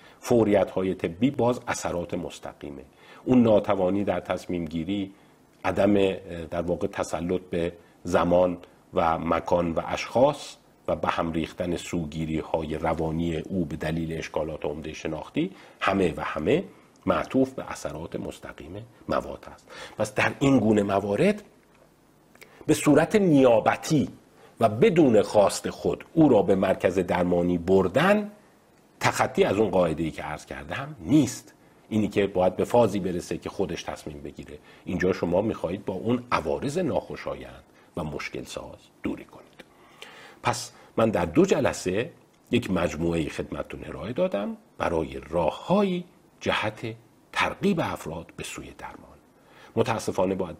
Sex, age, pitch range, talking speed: male, 50-69, 85-125 Hz, 135 wpm